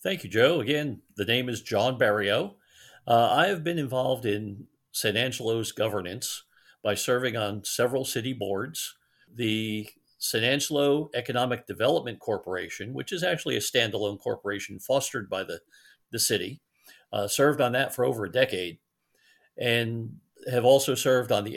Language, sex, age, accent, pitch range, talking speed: English, male, 50-69, American, 110-135 Hz, 155 wpm